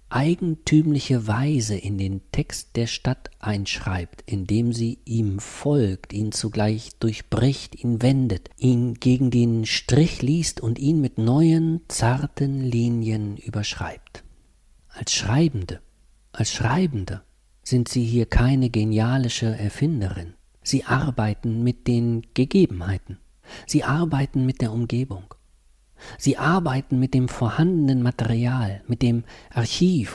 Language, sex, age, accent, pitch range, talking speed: German, male, 50-69, German, 100-135 Hz, 115 wpm